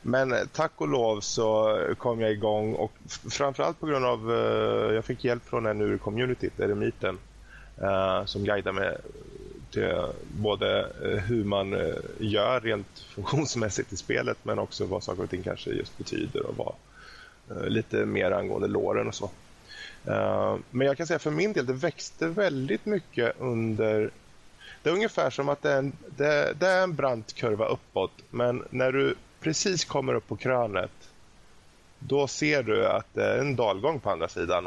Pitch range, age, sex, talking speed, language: 105-135 Hz, 20-39, male, 170 wpm, Swedish